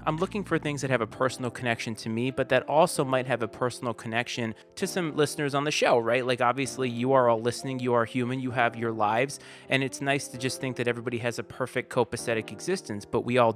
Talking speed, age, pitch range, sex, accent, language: 245 wpm, 30-49, 115-140 Hz, male, American, English